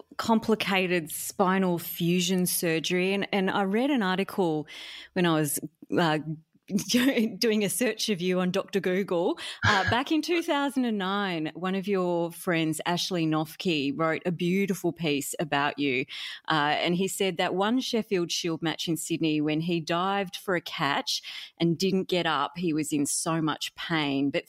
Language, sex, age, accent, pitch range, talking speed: English, female, 30-49, Australian, 160-200 Hz, 170 wpm